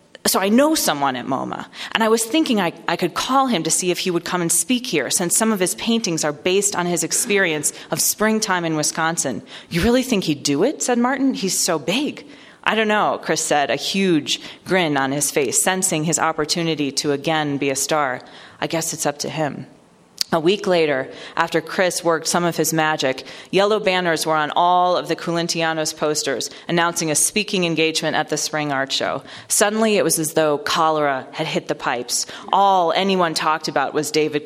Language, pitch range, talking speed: English, 150-185 Hz, 205 wpm